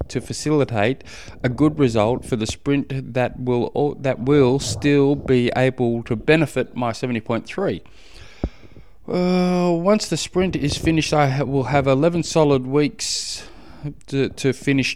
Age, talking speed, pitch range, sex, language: 20-39, 145 wpm, 115-145 Hz, male, English